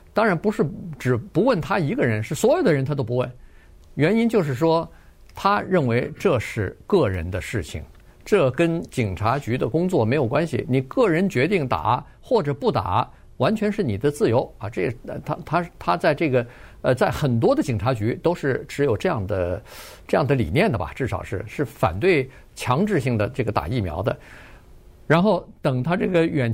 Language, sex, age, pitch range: Chinese, male, 50-69, 110-150 Hz